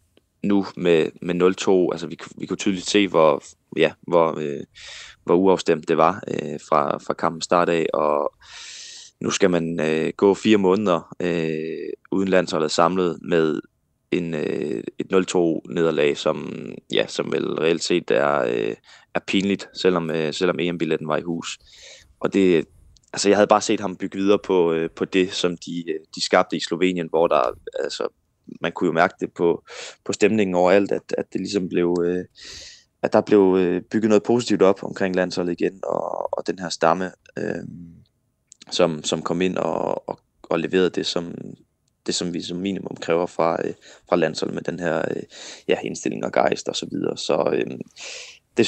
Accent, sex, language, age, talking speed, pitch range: native, male, Danish, 20-39, 175 wpm, 85-100 Hz